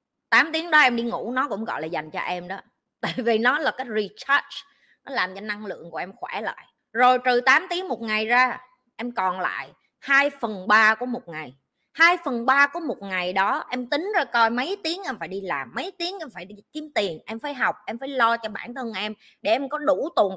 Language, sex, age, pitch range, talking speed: Vietnamese, female, 20-39, 215-290 Hz, 245 wpm